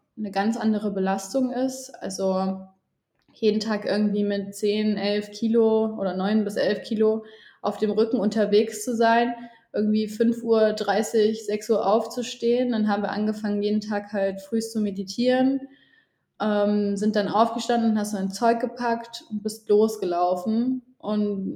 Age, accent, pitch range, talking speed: 20-39, German, 205-235 Hz, 150 wpm